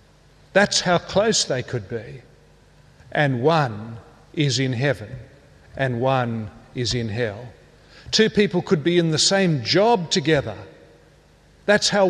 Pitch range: 130-170 Hz